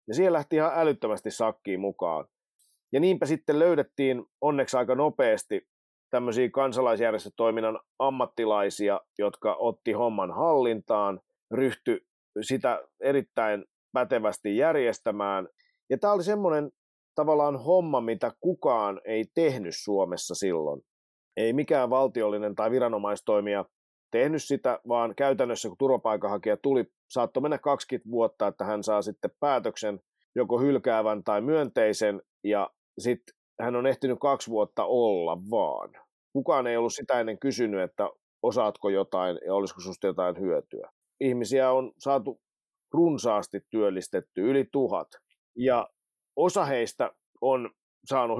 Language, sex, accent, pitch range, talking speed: English, male, Finnish, 110-140 Hz, 120 wpm